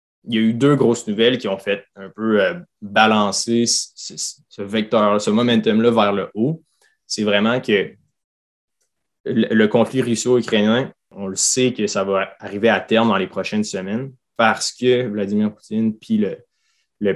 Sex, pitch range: male, 100-120 Hz